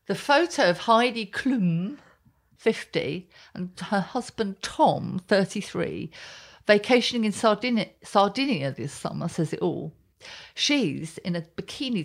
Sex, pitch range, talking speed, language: female, 165-225 Hz, 115 wpm, English